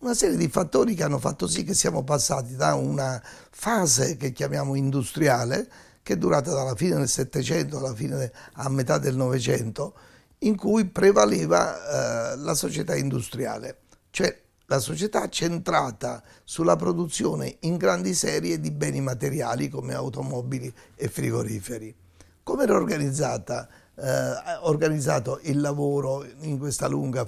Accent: native